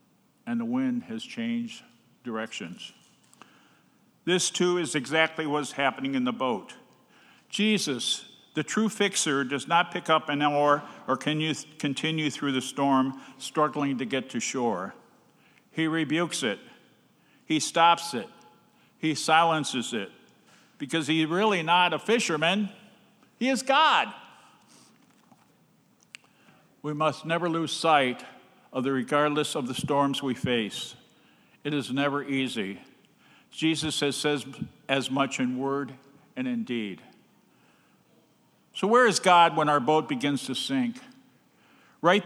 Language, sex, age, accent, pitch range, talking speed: English, male, 50-69, American, 140-200 Hz, 130 wpm